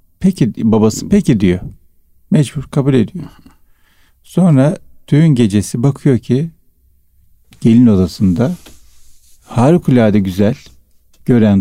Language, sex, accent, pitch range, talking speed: Turkish, male, native, 90-120 Hz, 90 wpm